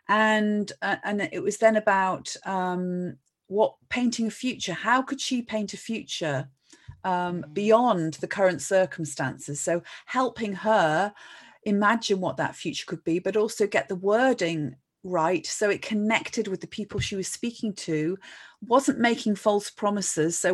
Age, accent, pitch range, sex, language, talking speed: 40-59, British, 175-215 Hz, female, English, 155 wpm